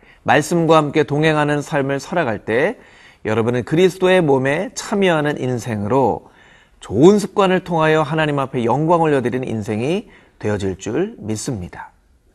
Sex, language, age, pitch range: male, Korean, 40-59, 120-170 Hz